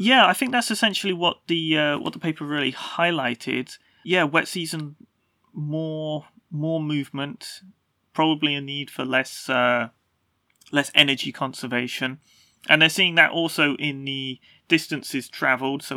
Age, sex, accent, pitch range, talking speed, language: 30-49, male, British, 125-155 Hz, 145 wpm, English